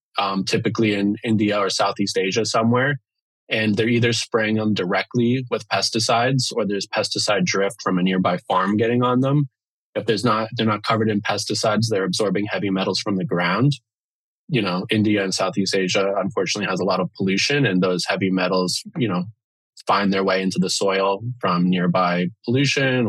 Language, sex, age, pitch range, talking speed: English, male, 20-39, 95-115 Hz, 180 wpm